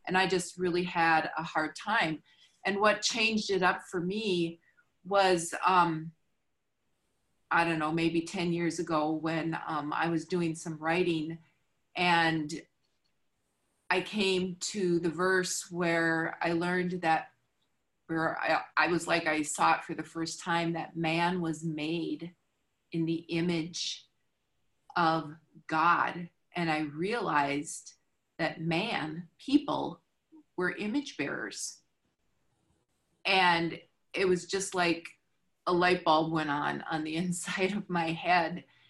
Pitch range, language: 160-180 Hz, English